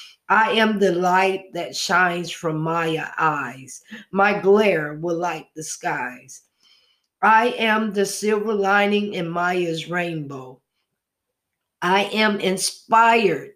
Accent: American